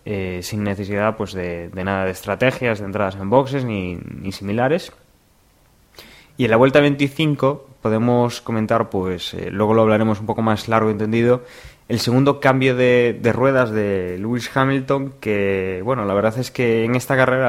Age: 20-39